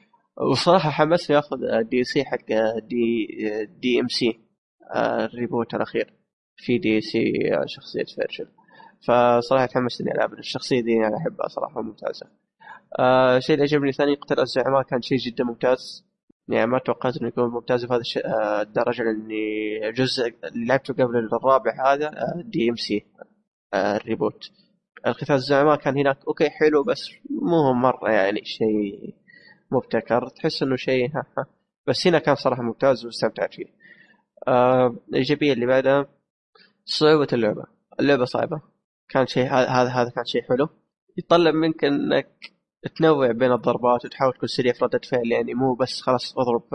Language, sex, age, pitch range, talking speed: Arabic, male, 20-39, 115-140 Hz, 145 wpm